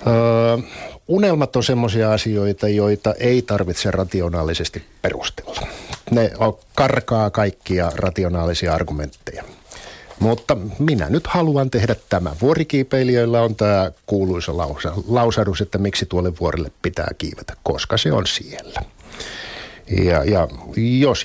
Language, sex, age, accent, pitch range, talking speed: Finnish, male, 50-69, native, 95-120 Hz, 115 wpm